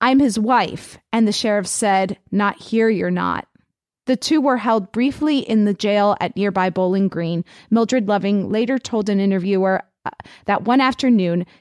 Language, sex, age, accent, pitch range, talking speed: English, female, 30-49, American, 185-225 Hz, 170 wpm